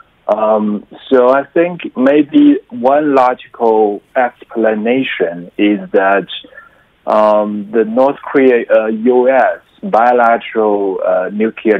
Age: 30-49